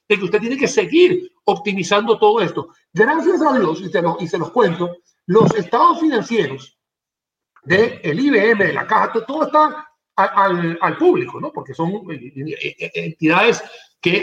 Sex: male